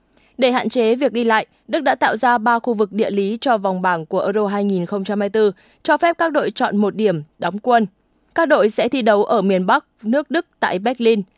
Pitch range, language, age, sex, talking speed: 200-255 Hz, Vietnamese, 20-39, female, 220 wpm